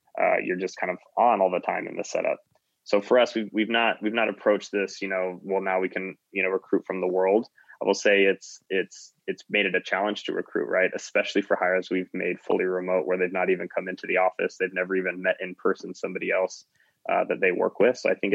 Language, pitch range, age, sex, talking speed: English, 90-100 Hz, 20-39, male, 255 wpm